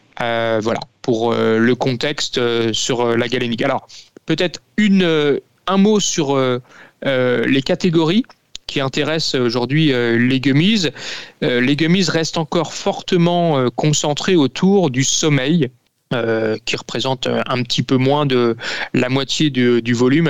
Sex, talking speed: male, 155 wpm